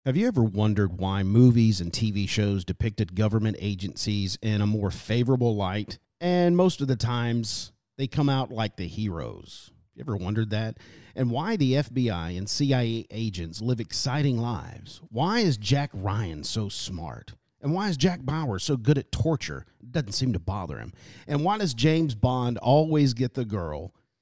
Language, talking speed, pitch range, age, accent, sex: English, 175 wpm, 105-145 Hz, 40-59, American, male